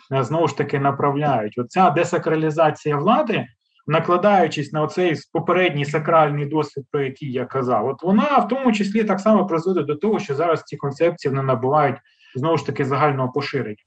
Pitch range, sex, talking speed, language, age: 130-170 Hz, male, 160 wpm, Ukrainian, 20-39